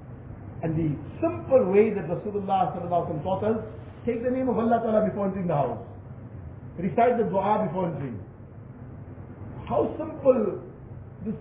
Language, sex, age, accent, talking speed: English, male, 50-69, Indian, 135 wpm